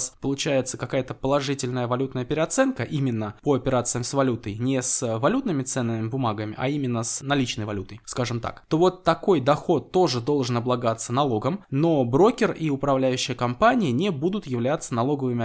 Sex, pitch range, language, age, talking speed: male, 130-175 Hz, Russian, 20-39, 150 wpm